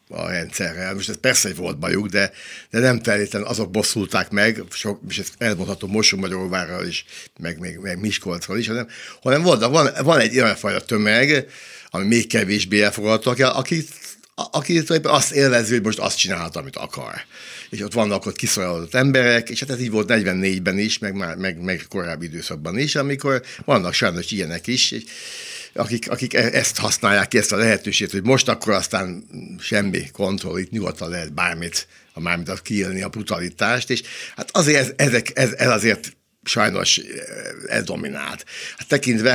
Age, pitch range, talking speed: 60-79, 95-125 Hz, 165 wpm